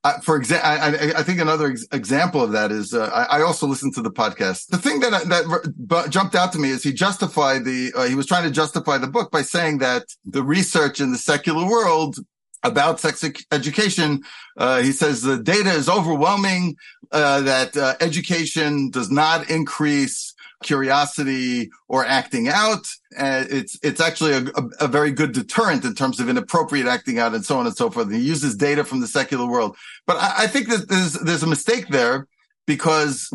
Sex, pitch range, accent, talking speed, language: male, 140-185 Hz, American, 200 wpm, English